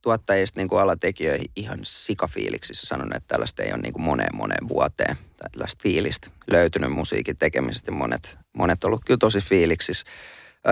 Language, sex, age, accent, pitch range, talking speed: Finnish, male, 30-49, native, 90-130 Hz, 140 wpm